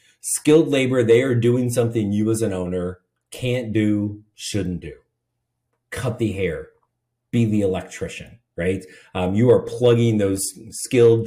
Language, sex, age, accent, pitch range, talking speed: English, male, 30-49, American, 95-120 Hz, 145 wpm